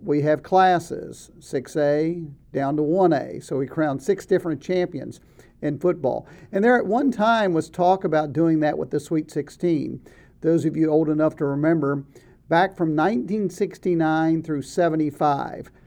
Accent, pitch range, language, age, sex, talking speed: American, 150-185 Hz, English, 50-69, male, 155 wpm